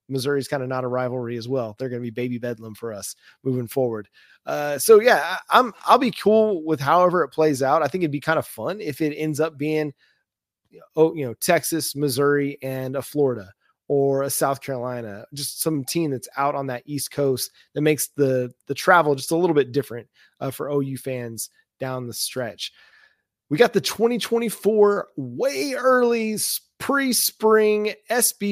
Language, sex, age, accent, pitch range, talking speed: English, male, 20-39, American, 135-185 Hz, 195 wpm